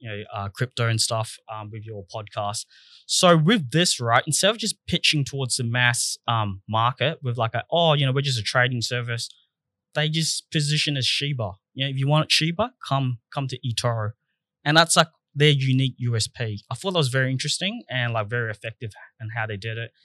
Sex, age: male, 20-39